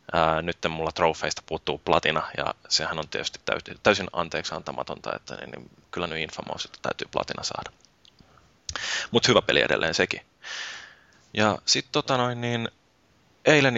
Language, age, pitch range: Finnish, 20-39, 85-100 Hz